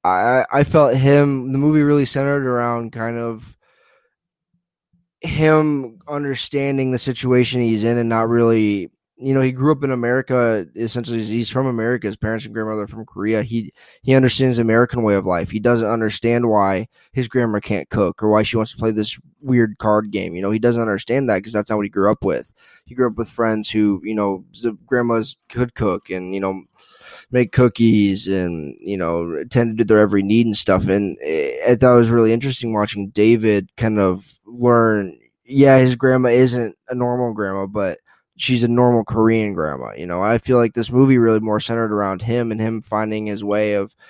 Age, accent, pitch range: 20-39, American, 105-125 Hz